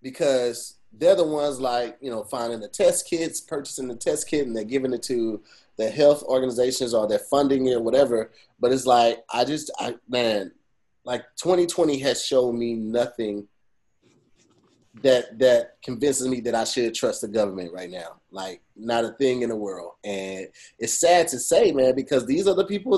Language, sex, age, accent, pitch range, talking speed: English, male, 30-49, American, 120-165 Hz, 185 wpm